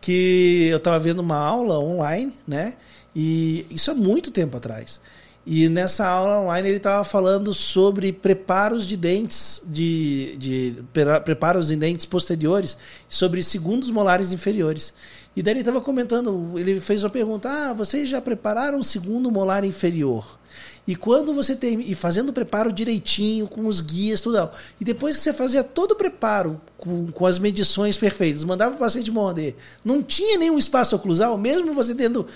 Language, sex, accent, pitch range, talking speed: Portuguese, male, Brazilian, 170-230 Hz, 165 wpm